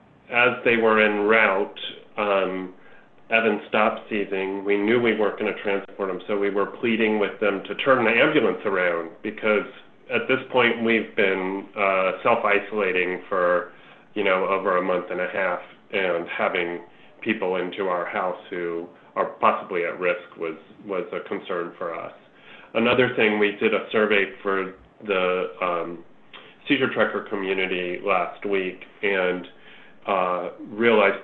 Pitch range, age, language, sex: 90-115 Hz, 30-49, English, male